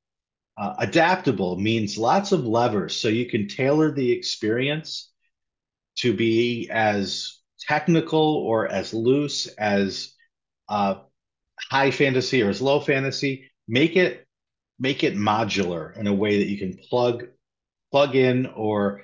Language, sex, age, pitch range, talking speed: English, male, 40-59, 100-135 Hz, 130 wpm